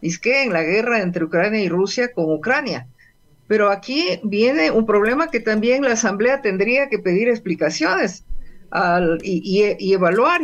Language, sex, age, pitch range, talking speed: Spanish, female, 50-69, 180-250 Hz, 170 wpm